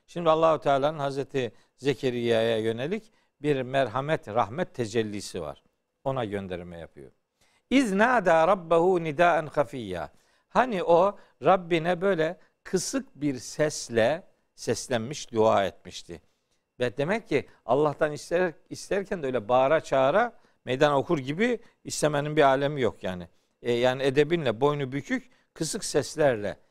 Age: 60-79